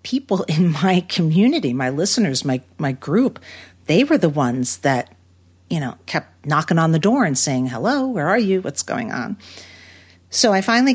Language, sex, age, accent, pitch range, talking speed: English, female, 50-69, American, 125-170 Hz, 180 wpm